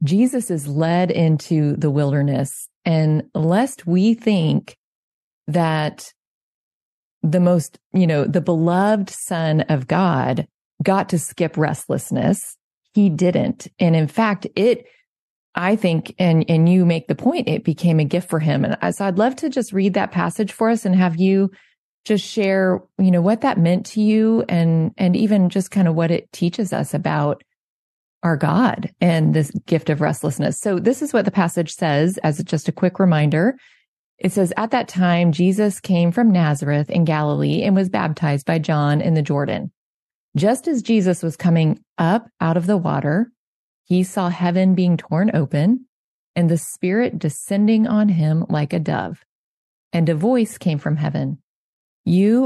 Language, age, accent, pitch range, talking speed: English, 30-49, American, 160-205 Hz, 170 wpm